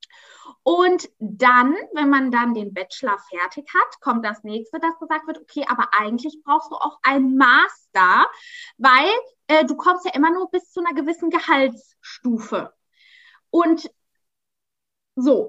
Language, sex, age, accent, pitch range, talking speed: German, female, 20-39, German, 245-340 Hz, 145 wpm